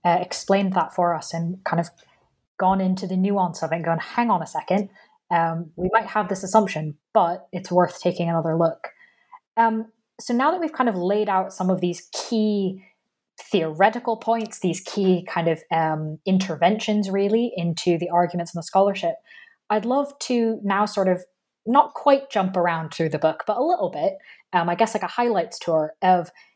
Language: English